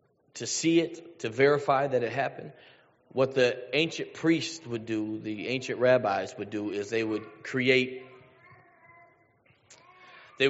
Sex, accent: male, American